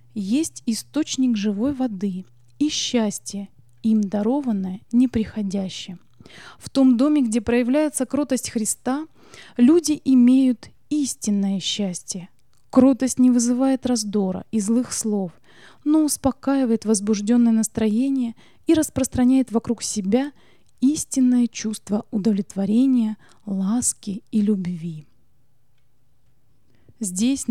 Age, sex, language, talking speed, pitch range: 20-39, female, English, 90 wpm, 210-265 Hz